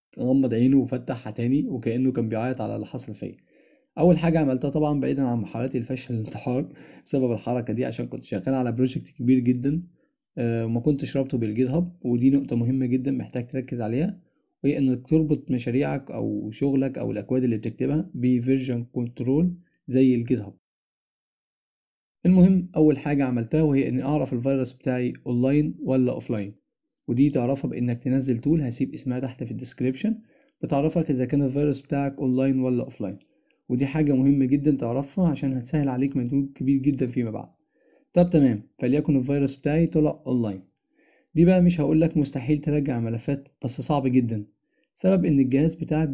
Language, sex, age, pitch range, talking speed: Arabic, male, 20-39, 125-150 Hz, 155 wpm